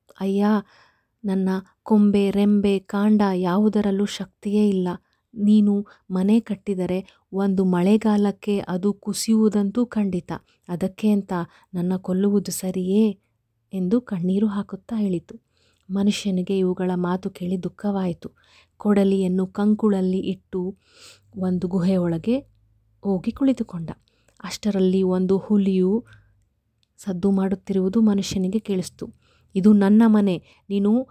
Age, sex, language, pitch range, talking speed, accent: 30-49, female, Kannada, 185-215 Hz, 95 wpm, native